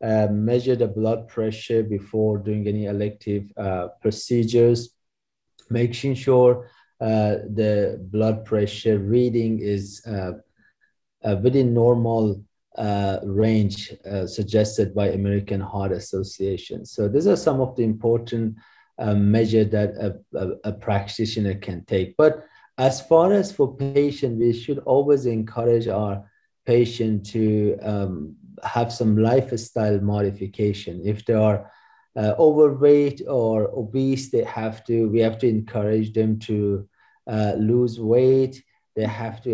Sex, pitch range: male, 105-120 Hz